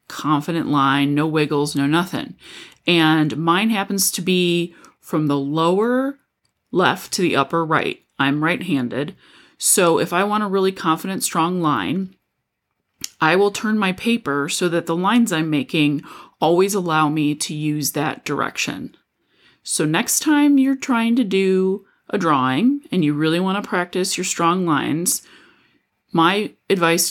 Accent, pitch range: American, 155-200 Hz